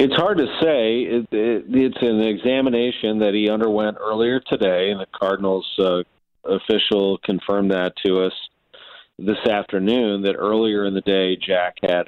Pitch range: 90-110 Hz